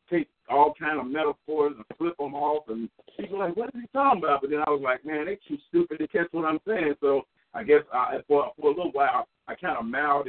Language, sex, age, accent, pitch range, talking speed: English, male, 50-69, American, 130-195 Hz, 255 wpm